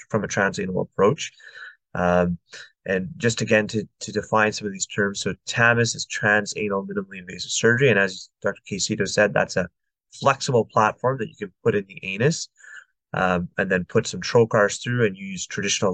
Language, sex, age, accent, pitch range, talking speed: English, male, 20-39, American, 95-115 Hz, 180 wpm